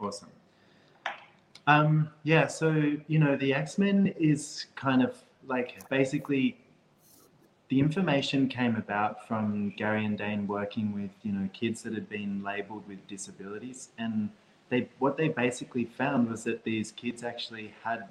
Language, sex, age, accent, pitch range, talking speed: English, male, 20-39, Australian, 105-125 Hz, 145 wpm